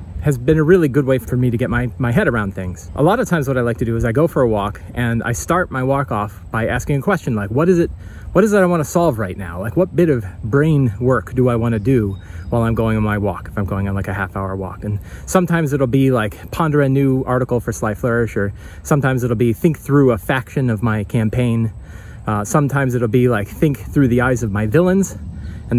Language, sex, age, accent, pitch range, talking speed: English, male, 30-49, American, 105-135 Hz, 265 wpm